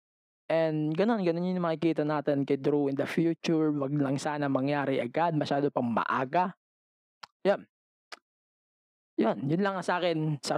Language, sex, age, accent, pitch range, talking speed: English, male, 20-39, Filipino, 140-175 Hz, 140 wpm